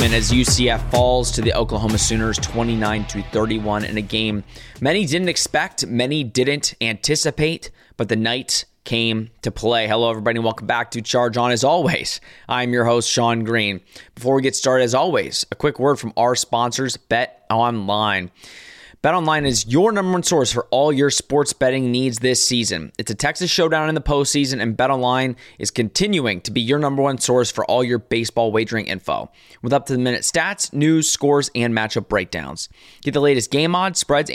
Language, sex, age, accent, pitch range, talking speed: English, male, 20-39, American, 115-145 Hz, 185 wpm